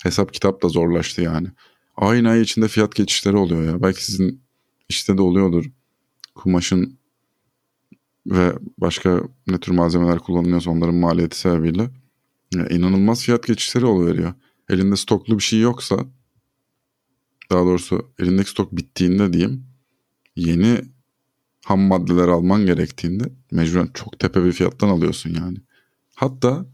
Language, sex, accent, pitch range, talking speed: Turkish, male, native, 90-125 Hz, 125 wpm